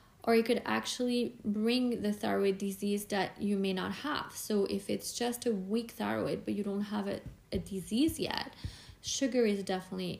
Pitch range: 170-205 Hz